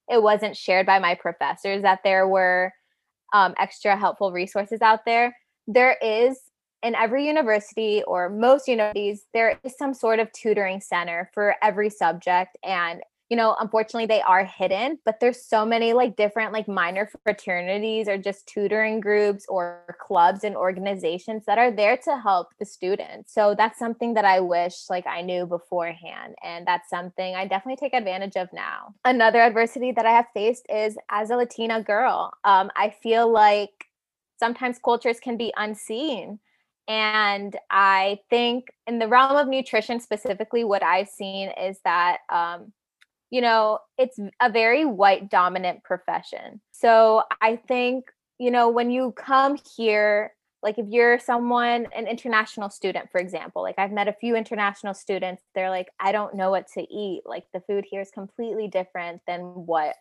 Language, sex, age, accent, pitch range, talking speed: English, female, 20-39, American, 195-240 Hz, 170 wpm